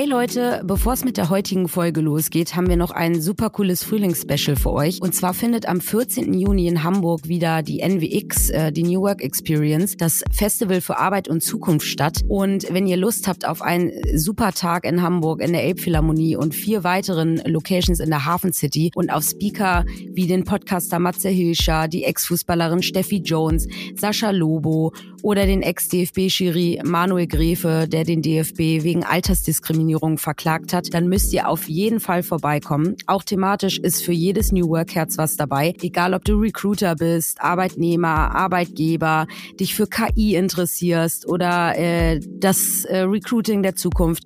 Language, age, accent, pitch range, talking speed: German, 30-49, German, 165-195 Hz, 165 wpm